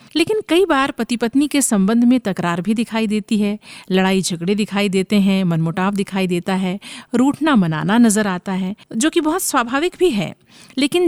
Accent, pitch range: native, 190-250 Hz